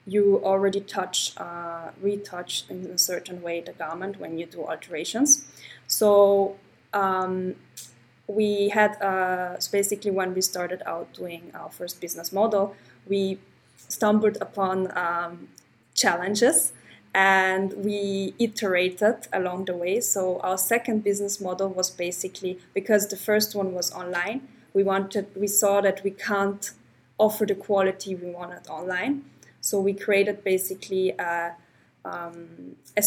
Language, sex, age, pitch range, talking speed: English, female, 20-39, 180-205 Hz, 135 wpm